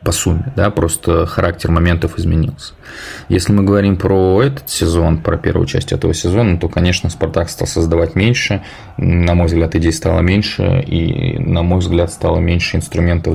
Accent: native